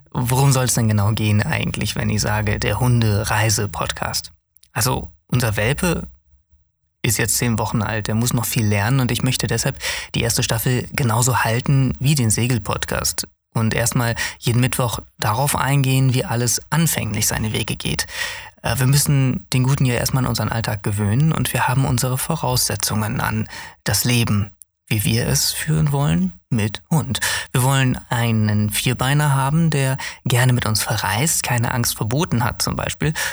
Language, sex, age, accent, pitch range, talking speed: German, male, 20-39, German, 115-140 Hz, 160 wpm